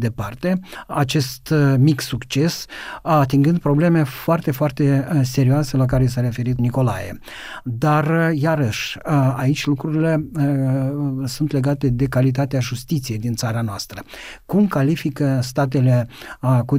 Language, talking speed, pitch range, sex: Romanian, 105 wpm, 130-160 Hz, male